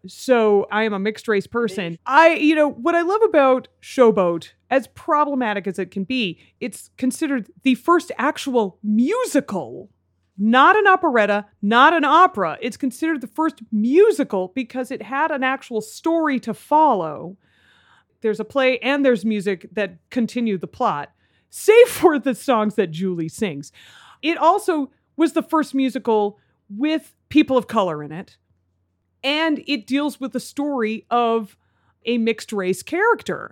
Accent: American